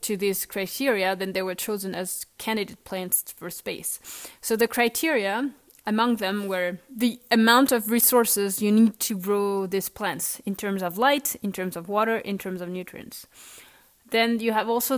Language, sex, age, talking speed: English, female, 30-49, 175 wpm